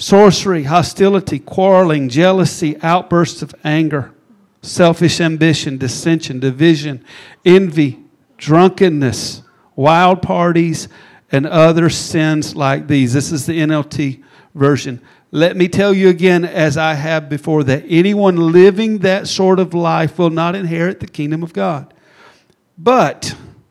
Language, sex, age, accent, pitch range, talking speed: English, male, 50-69, American, 155-190 Hz, 125 wpm